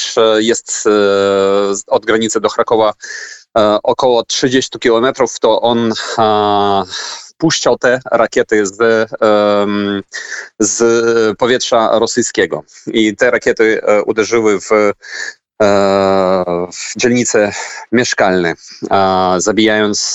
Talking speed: 75 wpm